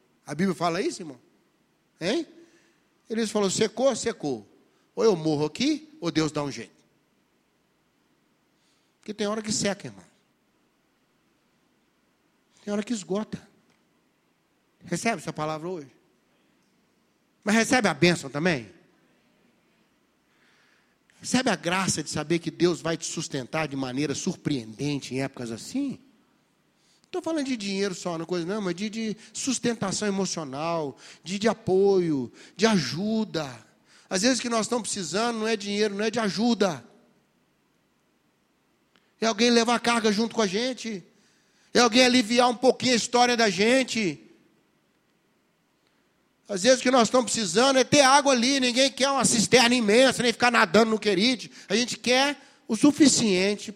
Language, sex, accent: Portuguese, male, Brazilian